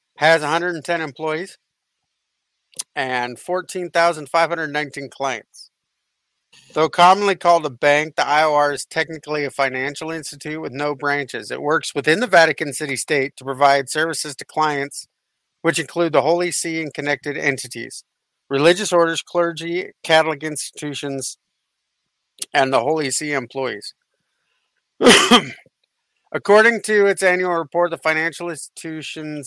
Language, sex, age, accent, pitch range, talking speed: English, male, 50-69, American, 140-165 Hz, 120 wpm